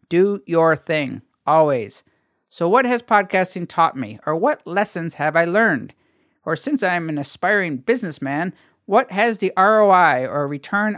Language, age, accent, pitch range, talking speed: English, 50-69, American, 150-200 Hz, 155 wpm